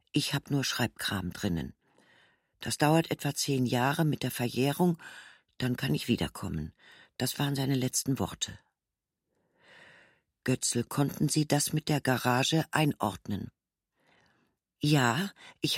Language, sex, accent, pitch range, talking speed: German, female, German, 120-150 Hz, 120 wpm